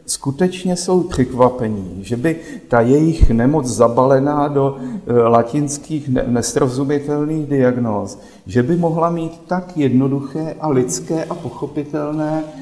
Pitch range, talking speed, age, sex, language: 120-150 Hz, 110 wpm, 50-69, male, Slovak